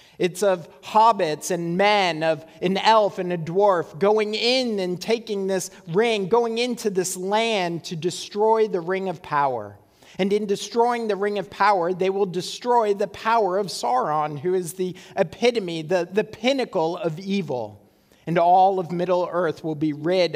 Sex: male